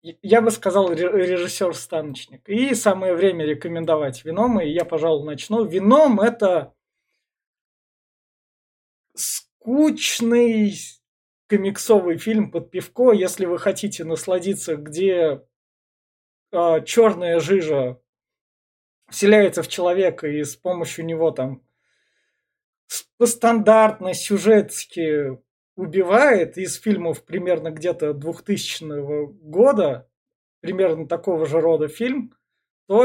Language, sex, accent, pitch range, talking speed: Russian, male, native, 165-210 Hz, 95 wpm